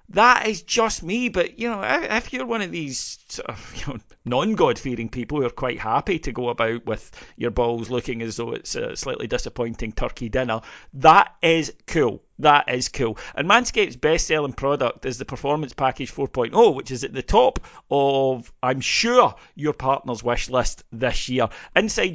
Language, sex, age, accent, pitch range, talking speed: English, male, 40-59, British, 115-155 Hz, 180 wpm